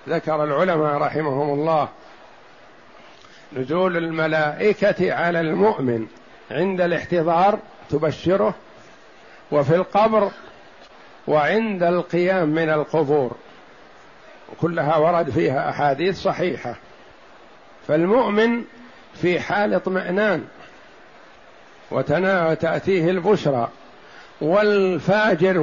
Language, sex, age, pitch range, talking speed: Arabic, male, 60-79, 155-195 Hz, 70 wpm